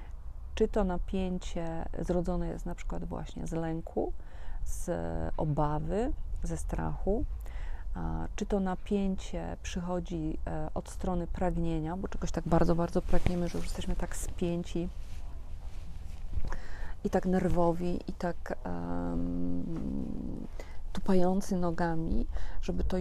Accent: native